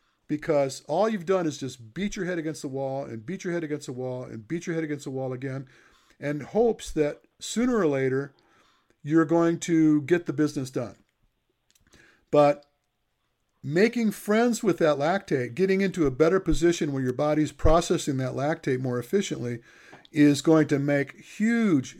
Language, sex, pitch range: English, male, 135-170 Hz